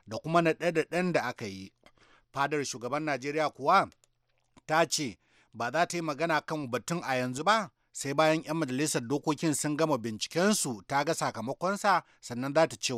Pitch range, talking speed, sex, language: 130-170 Hz, 135 wpm, male, English